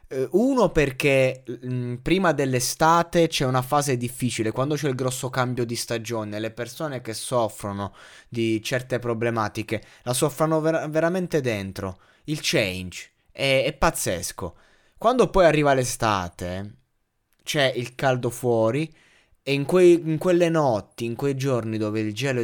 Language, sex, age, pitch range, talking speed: Italian, male, 20-39, 115-160 Hz, 135 wpm